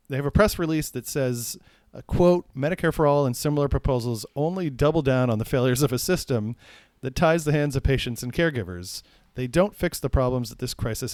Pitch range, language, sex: 120-150 Hz, English, male